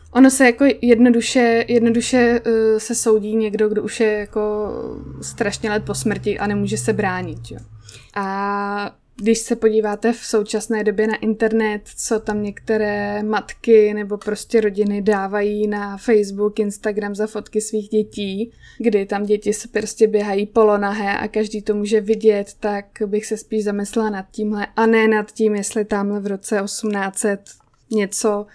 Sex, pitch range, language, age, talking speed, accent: female, 205-235 Hz, Czech, 20-39, 155 wpm, native